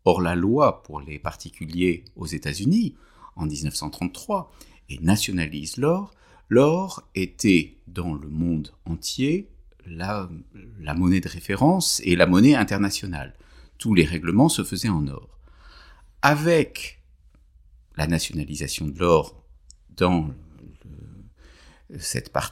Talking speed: 110 wpm